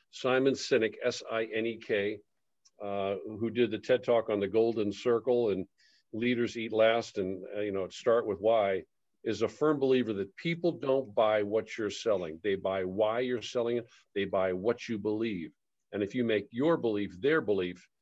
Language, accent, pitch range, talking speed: English, American, 105-125 Hz, 180 wpm